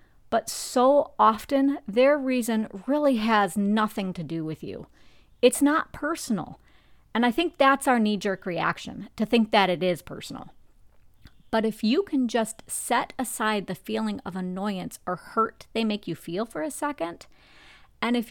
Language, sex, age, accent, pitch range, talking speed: English, female, 40-59, American, 190-255 Hz, 165 wpm